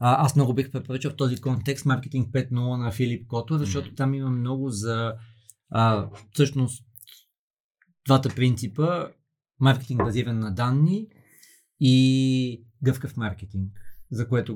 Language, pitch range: Bulgarian, 110-130 Hz